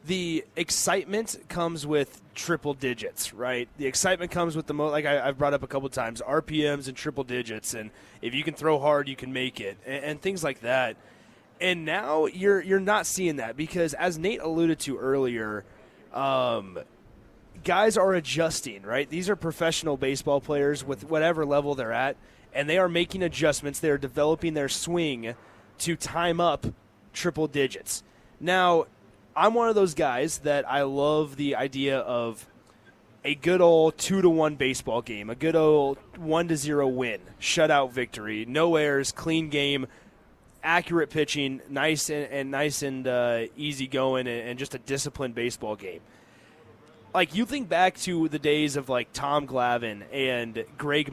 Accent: American